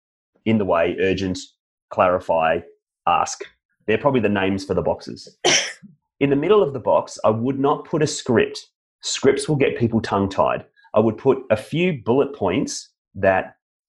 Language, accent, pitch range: English, Australian, 100-145 Hz